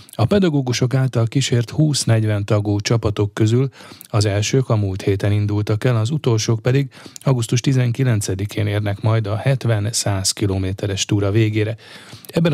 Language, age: Hungarian, 30-49